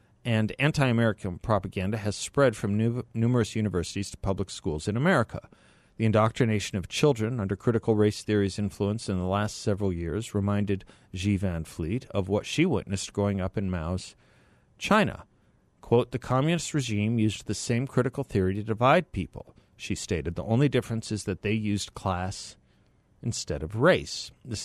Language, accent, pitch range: English, American, 95-120 Hz